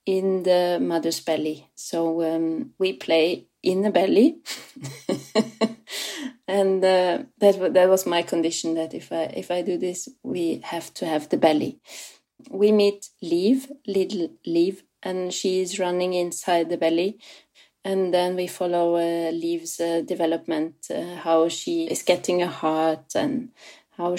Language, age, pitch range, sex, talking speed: English, 30-49, 165-195 Hz, female, 150 wpm